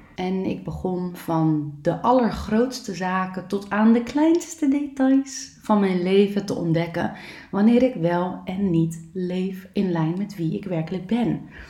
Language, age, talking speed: Dutch, 20-39, 155 wpm